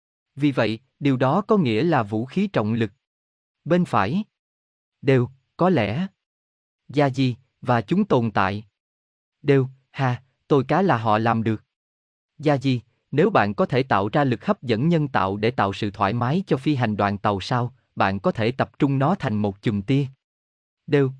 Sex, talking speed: male, 185 wpm